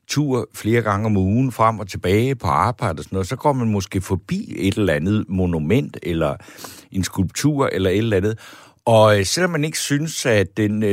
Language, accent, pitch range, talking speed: Danish, native, 100-130 Hz, 190 wpm